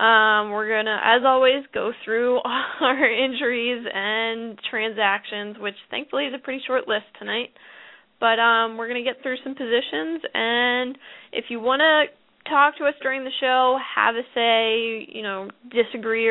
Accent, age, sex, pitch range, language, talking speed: American, 10-29, female, 220-260 Hz, English, 170 wpm